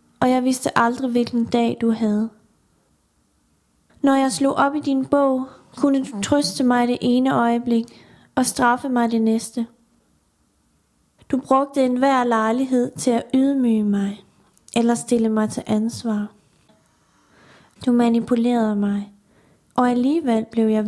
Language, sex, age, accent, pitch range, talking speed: Danish, female, 30-49, native, 220-255 Hz, 135 wpm